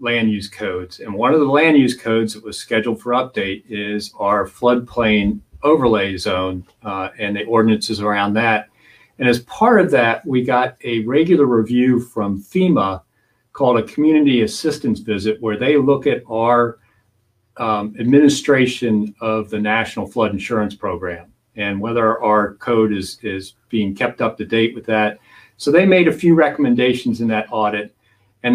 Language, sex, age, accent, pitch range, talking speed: English, male, 50-69, American, 105-130 Hz, 165 wpm